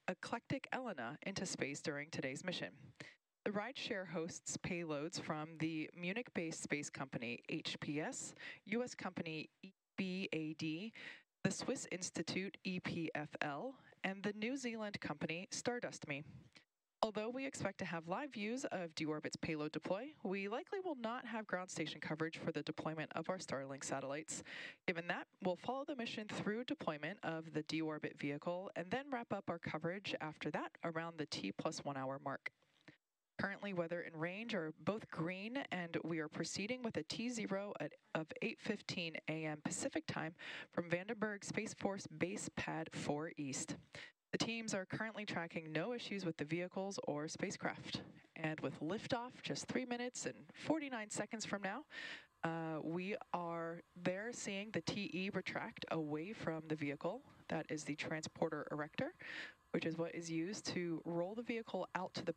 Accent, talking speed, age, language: American, 160 wpm, 20-39, English